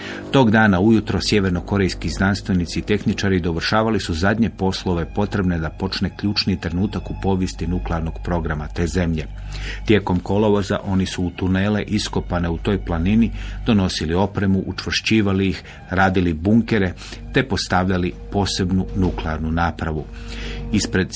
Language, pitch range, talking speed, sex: Croatian, 90-105 Hz, 125 wpm, male